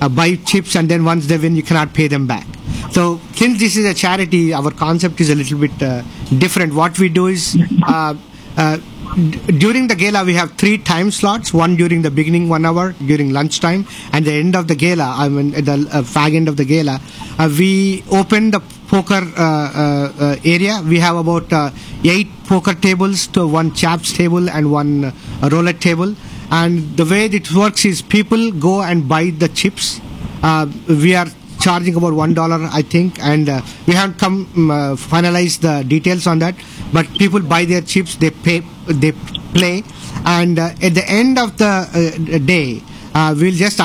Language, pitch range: English, 150-185 Hz